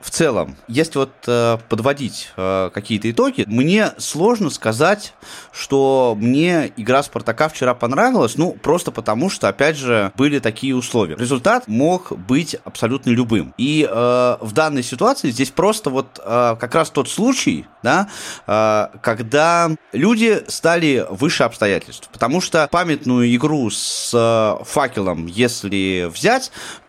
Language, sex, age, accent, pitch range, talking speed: Russian, male, 20-39, native, 100-145 Hz, 135 wpm